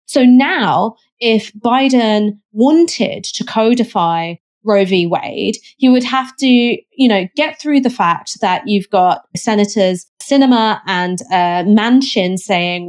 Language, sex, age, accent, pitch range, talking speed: English, female, 20-39, British, 195-260 Hz, 135 wpm